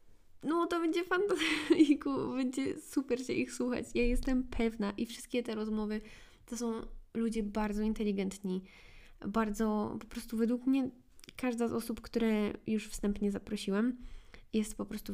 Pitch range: 210-240 Hz